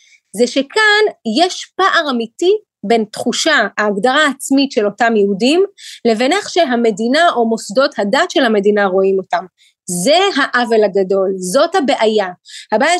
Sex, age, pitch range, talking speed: female, 30-49, 230-300 Hz, 130 wpm